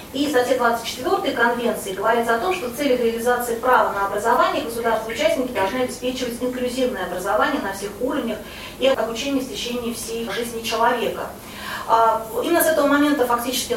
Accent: native